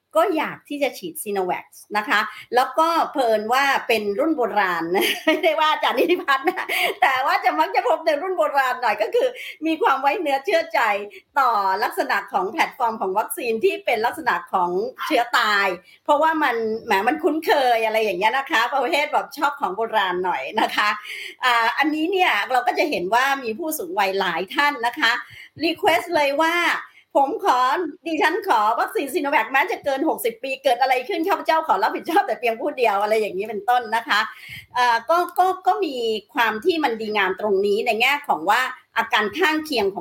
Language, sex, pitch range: Thai, male, 215-330 Hz